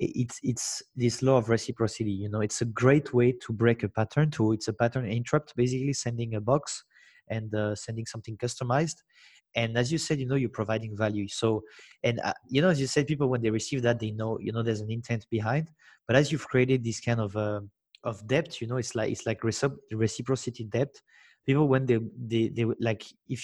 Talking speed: 235 wpm